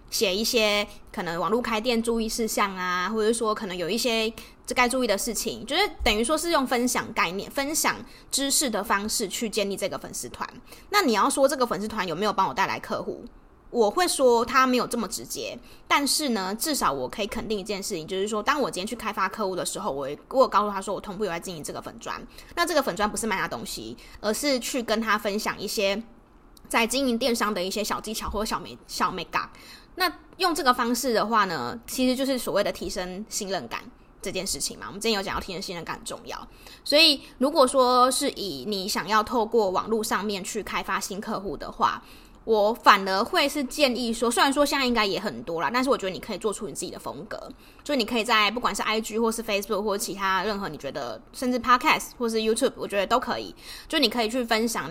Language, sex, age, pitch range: Chinese, female, 20-39, 205-255 Hz